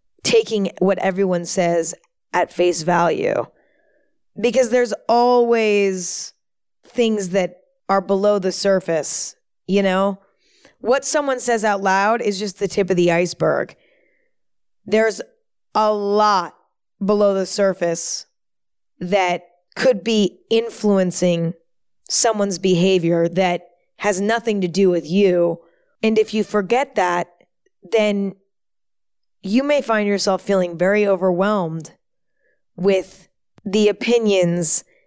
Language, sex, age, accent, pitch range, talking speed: English, female, 20-39, American, 175-220 Hz, 110 wpm